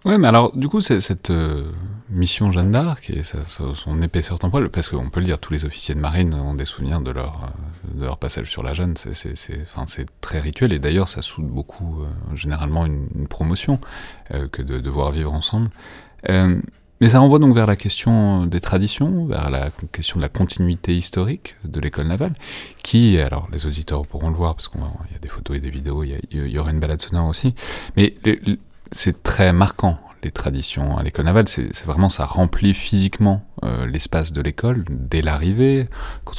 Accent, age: French, 30-49